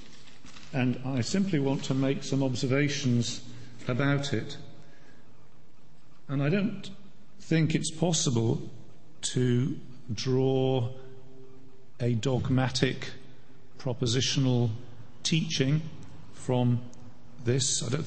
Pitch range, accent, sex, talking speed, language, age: 120-145 Hz, British, male, 85 wpm, English, 50-69